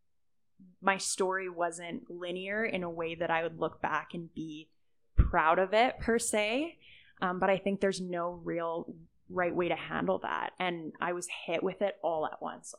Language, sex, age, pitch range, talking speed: English, female, 20-39, 170-195 Hz, 190 wpm